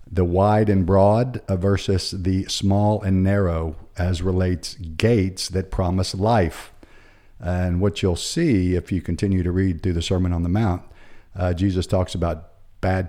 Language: English